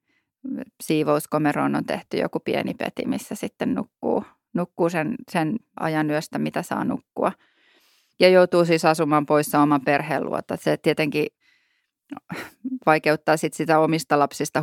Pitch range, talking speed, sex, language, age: 150-175 Hz, 130 wpm, female, Finnish, 30-49